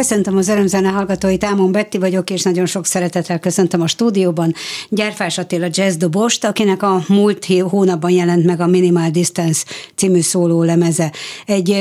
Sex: female